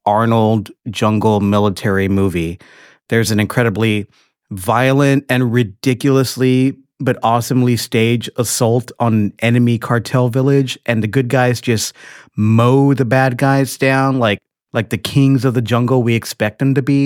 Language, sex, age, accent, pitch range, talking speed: English, male, 30-49, American, 110-130 Hz, 140 wpm